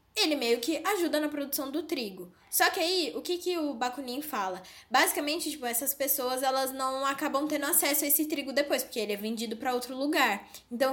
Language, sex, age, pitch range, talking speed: Portuguese, female, 10-29, 225-295 Hz, 210 wpm